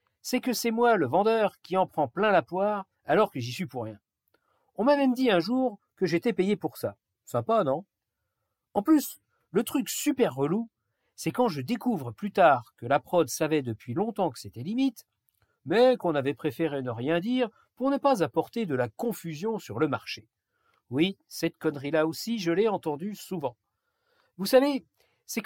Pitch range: 140-220 Hz